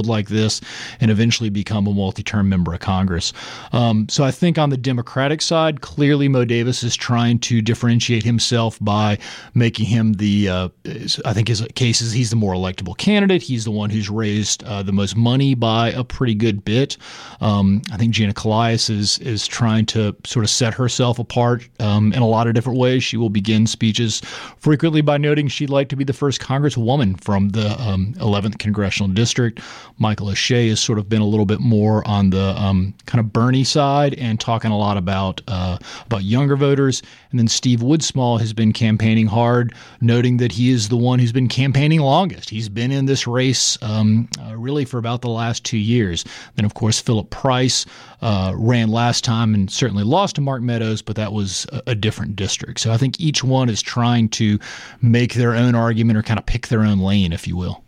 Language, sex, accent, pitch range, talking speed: English, male, American, 105-125 Hz, 205 wpm